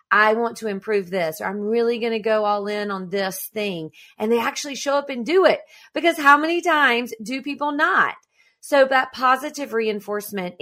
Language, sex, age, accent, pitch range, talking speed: English, female, 30-49, American, 195-260 Hz, 200 wpm